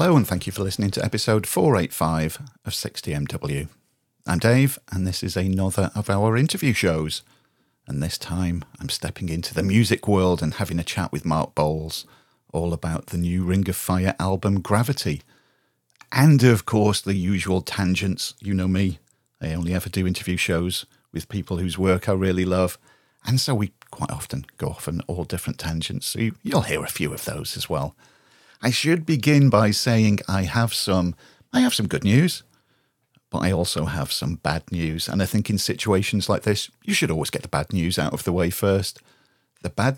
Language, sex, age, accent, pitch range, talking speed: English, male, 40-59, British, 85-115 Hz, 195 wpm